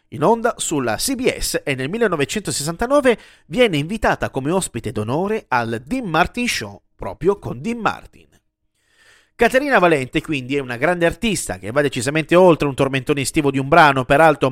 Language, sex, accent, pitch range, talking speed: Italian, male, native, 125-175 Hz, 155 wpm